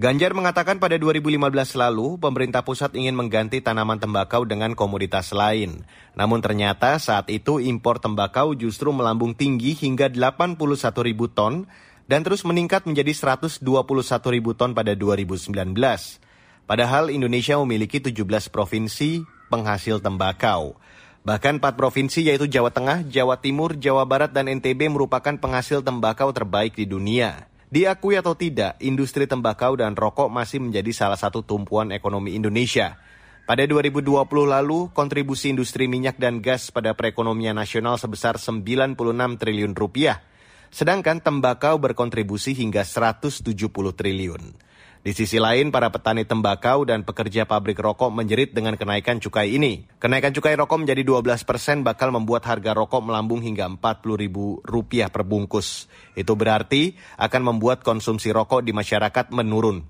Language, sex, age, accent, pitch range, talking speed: Indonesian, male, 30-49, native, 110-140 Hz, 130 wpm